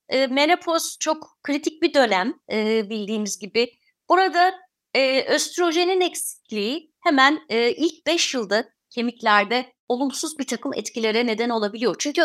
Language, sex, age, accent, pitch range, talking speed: Turkish, female, 30-49, native, 215-315 Hz, 110 wpm